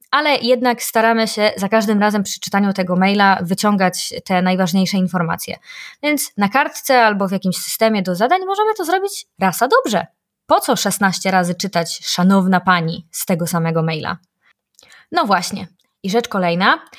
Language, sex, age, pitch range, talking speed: Polish, female, 20-39, 180-235 Hz, 165 wpm